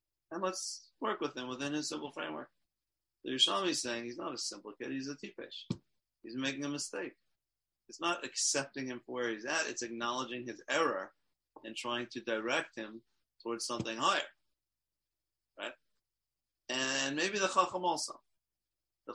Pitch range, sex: 120-155 Hz, male